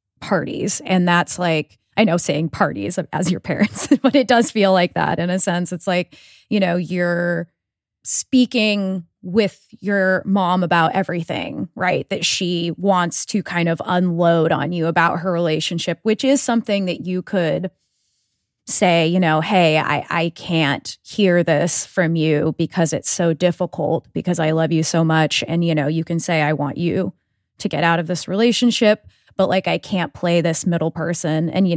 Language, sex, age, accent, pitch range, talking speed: English, female, 20-39, American, 165-195 Hz, 180 wpm